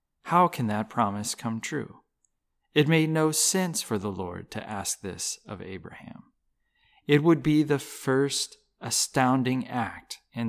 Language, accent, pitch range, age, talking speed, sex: English, American, 95-140 Hz, 30-49, 150 wpm, male